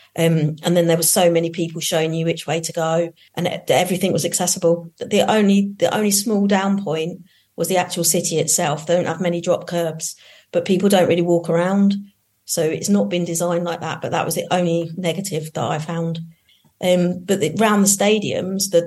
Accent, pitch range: British, 165-185 Hz